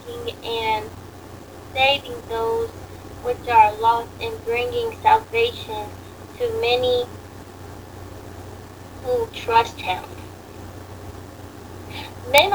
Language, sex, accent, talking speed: English, female, American, 70 wpm